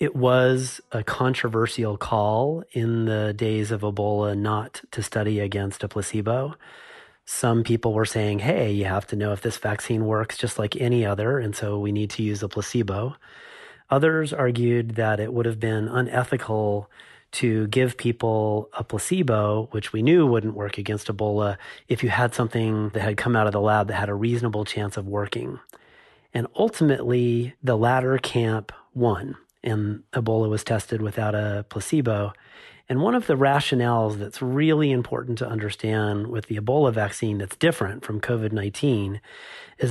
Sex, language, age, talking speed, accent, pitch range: male, English, 30-49, 165 wpm, American, 105-130 Hz